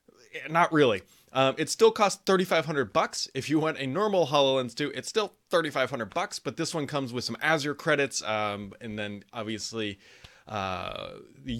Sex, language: male, English